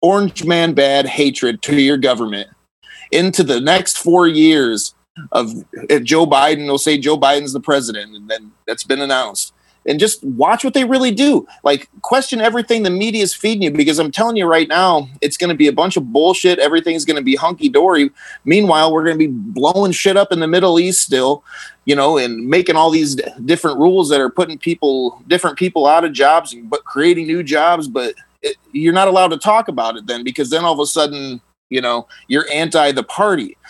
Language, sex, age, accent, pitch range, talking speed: English, male, 30-49, American, 140-190 Hz, 205 wpm